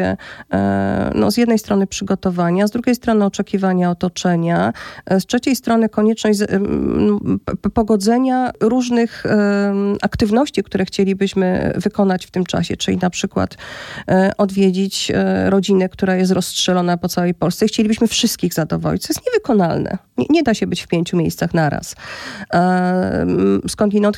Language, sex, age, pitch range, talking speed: Polish, female, 40-59, 180-230 Hz, 140 wpm